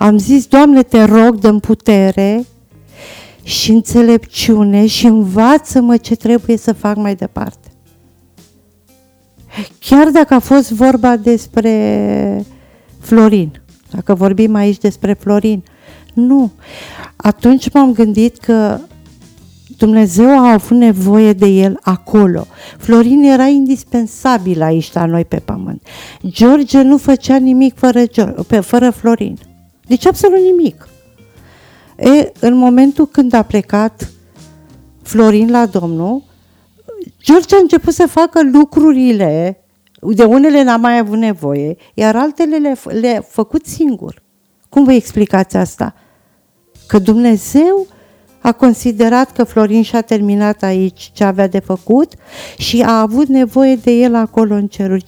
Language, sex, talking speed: Romanian, female, 120 wpm